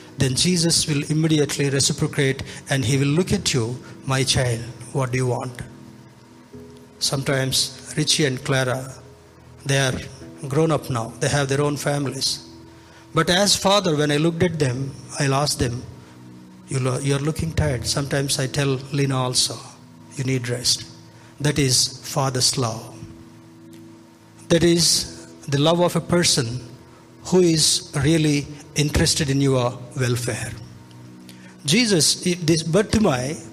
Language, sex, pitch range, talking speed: Telugu, male, 125-155 Hz, 140 wpm